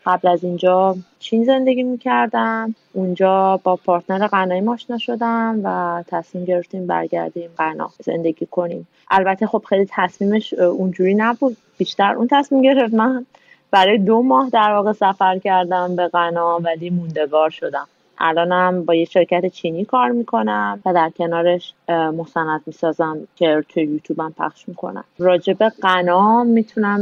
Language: Persian